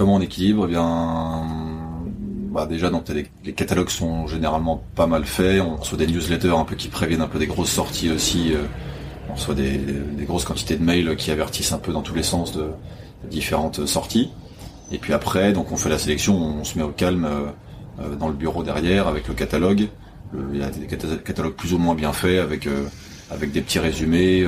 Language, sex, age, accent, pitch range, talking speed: French, male, 30-49, French, 75-90 Hz, 205 wpm